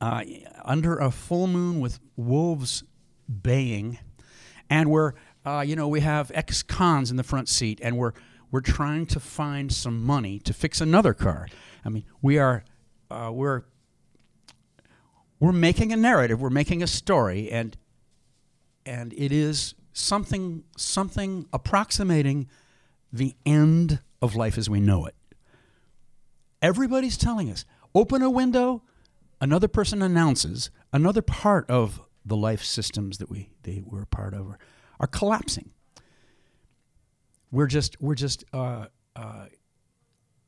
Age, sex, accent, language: 60-79, male, American, English